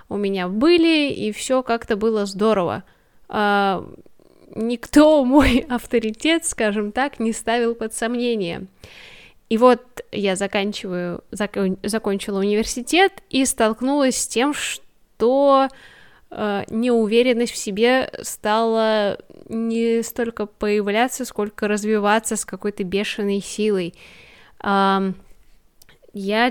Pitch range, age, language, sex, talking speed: 210-255 Hz, 10-29, Russian, female, 95 wpm